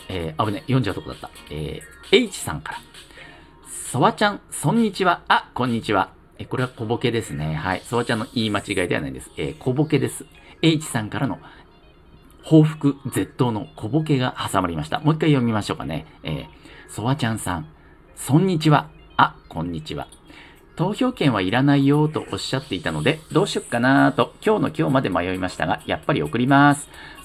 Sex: male